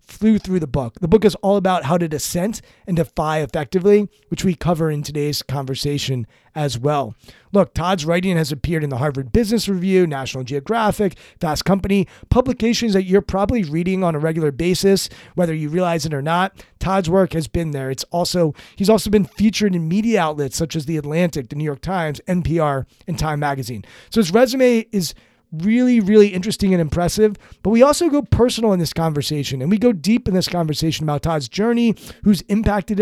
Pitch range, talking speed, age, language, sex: 155-205 Hz, 195 wpm, 30-49, English, male